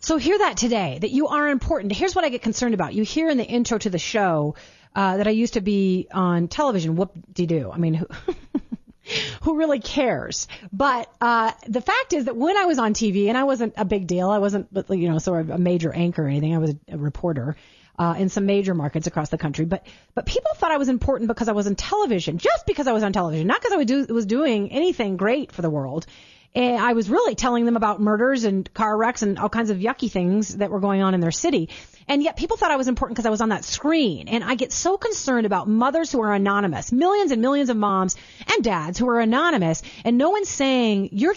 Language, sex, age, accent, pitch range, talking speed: English, female, 40-59, American, 195-275 Hz, 245 wpm